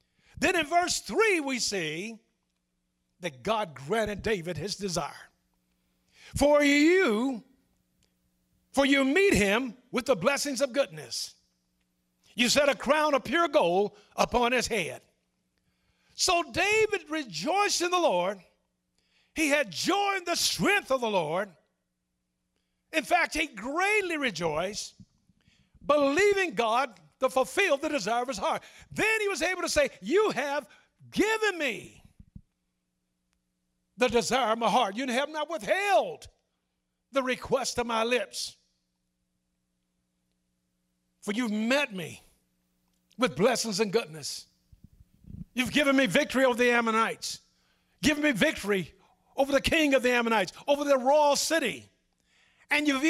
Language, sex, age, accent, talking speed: English, male, 60-79, American, 130 wpm